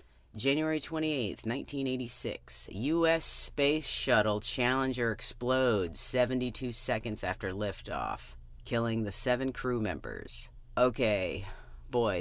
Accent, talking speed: American, 95 wpm